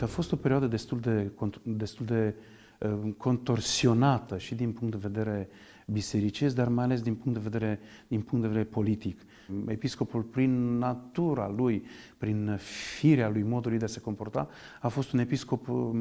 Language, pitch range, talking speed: Romanian, 105-125 Hz, 165 wpm